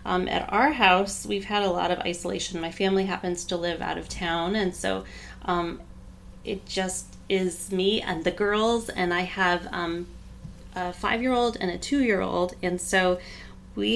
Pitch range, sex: 175-200 Hz, female